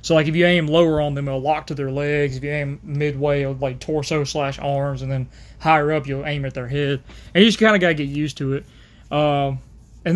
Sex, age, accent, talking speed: male, 20-39, American, 250 wpm